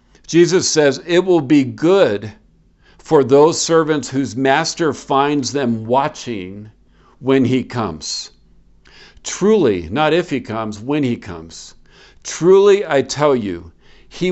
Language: English